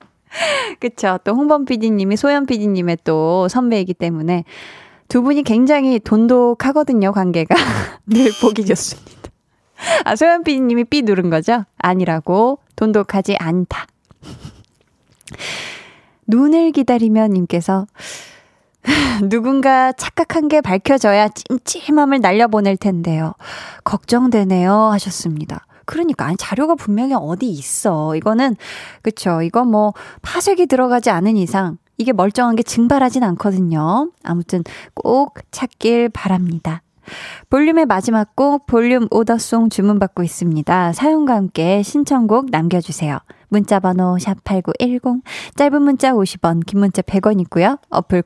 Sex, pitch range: female, 185-255 Hz